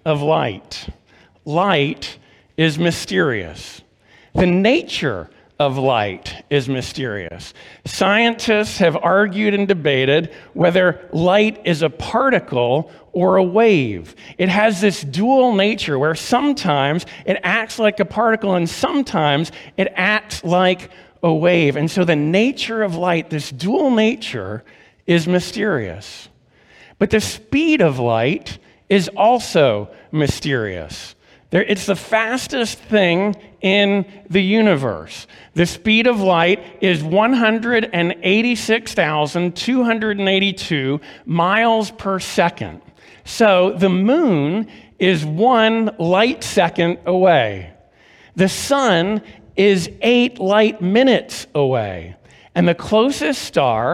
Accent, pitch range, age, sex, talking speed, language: American, 160-215 Hz, 50-69, male, 110 wpm, English